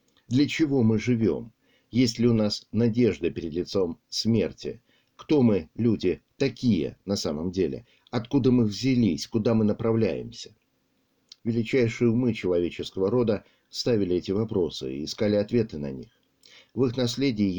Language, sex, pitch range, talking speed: Russian, male, 100-120 Hz, 135 wpm